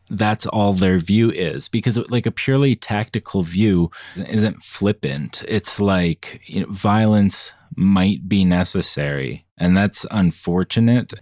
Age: 30-49